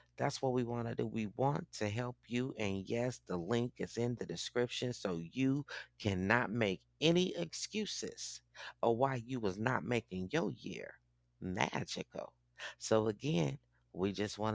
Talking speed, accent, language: 160 wpm, American, English